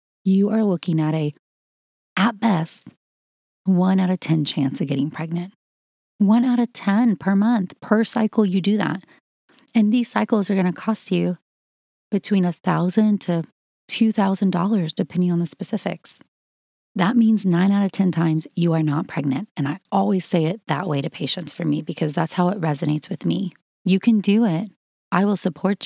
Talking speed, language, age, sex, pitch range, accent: 180 wpm, English, 30-49, female, 165-200 Hz, American